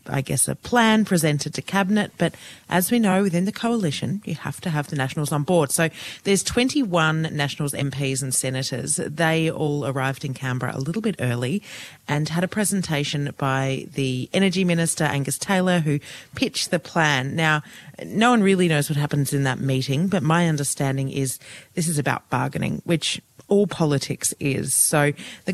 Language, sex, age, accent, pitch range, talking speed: English, female, 30-49, Australian, 140-175 Hz, 180 wpm